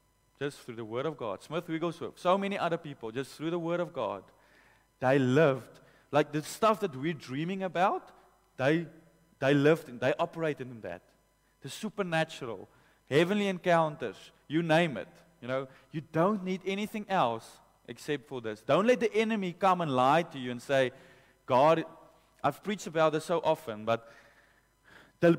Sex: male